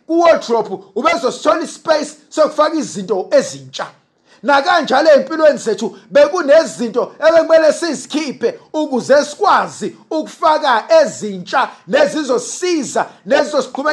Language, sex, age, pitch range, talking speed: English, male, 50-69, 245-335 Hz, 110 wpm